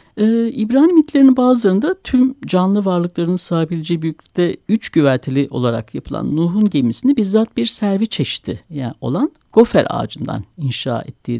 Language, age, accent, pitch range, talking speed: Turkish, 60-79, native, 140-230 Hz, 130 wpm